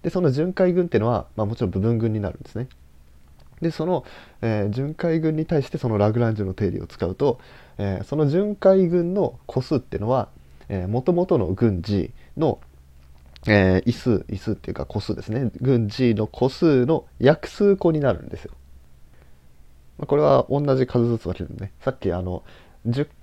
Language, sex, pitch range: Japanese, male, 85-130 Hz